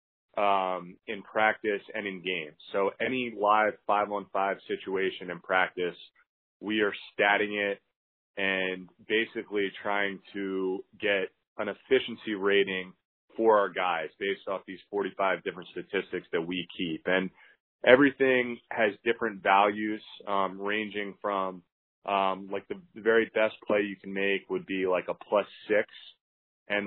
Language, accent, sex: English, American, male